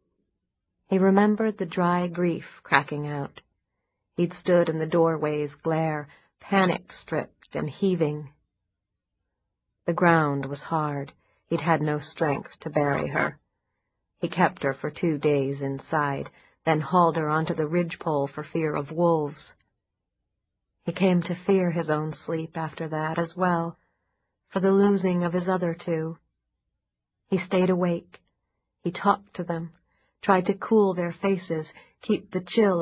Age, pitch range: 40-59, 150-175 Hz